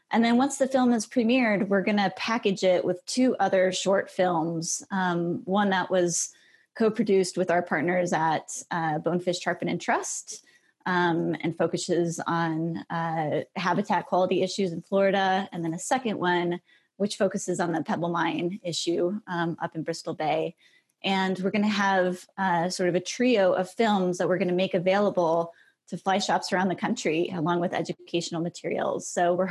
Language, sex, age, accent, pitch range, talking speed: English, female, 20-39, American, 175-200 Hz, 180 wpm